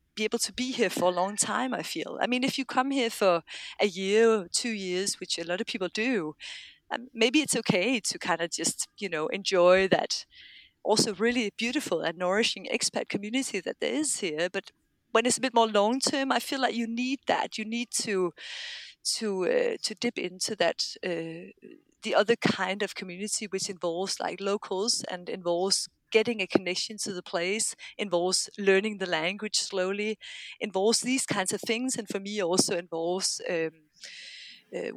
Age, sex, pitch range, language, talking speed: 30-49, female, 180-235 Hz, English, 185 wpm